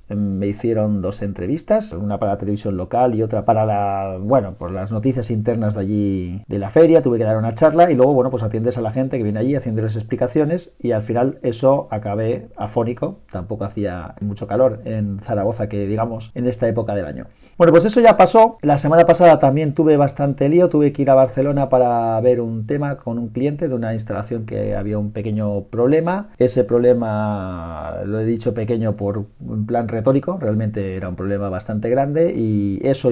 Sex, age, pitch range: male, 40-59, 105-145 Hz